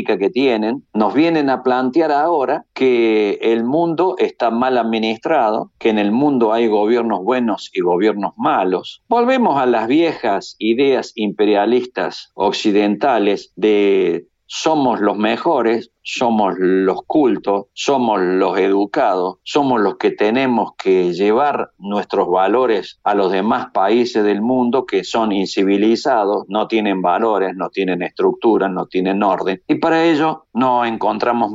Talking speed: 135 wpm